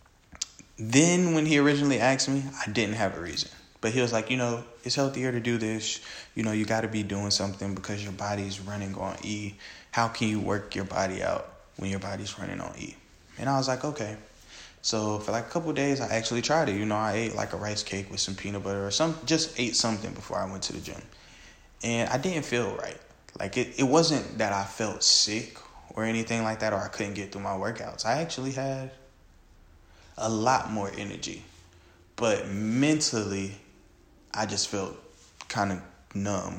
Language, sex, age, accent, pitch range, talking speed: English, male, 20-39, American, 95-125 Hz, 210 wpm